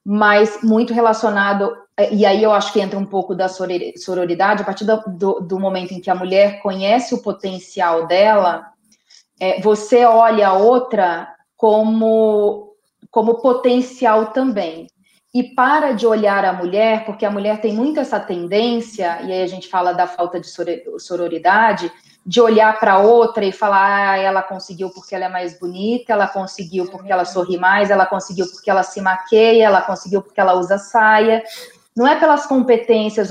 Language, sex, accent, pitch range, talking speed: Portuguese, female, Brazilian, 185-225 Hz, 165 wpm